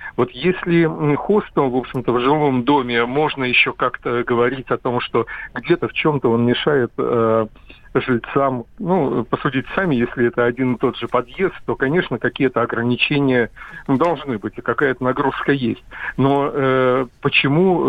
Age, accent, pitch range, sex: 50-69, native, 120-150 Hz, male